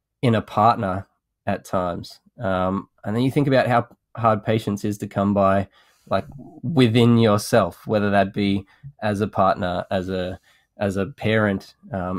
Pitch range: 100-115 Hz